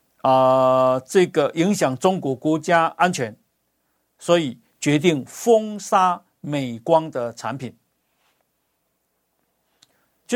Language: Chinese